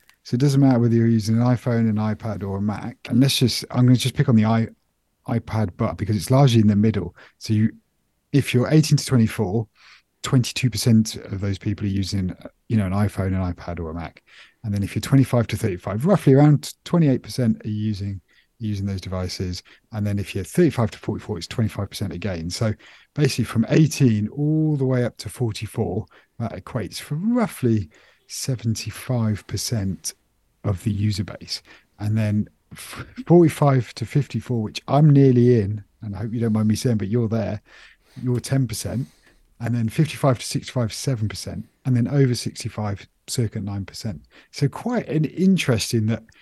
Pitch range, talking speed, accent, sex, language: 105-130 Hz, 185 wpm, British, male, English